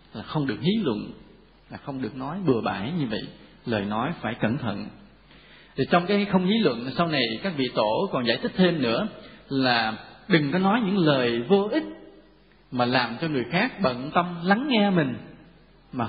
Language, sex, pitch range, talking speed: Vietnamese, male, 125-185 Hz, 195 wpm